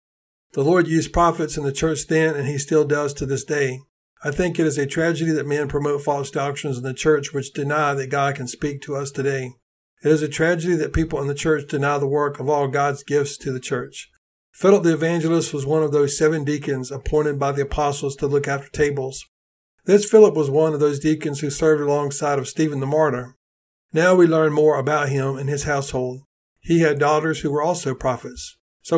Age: 50-69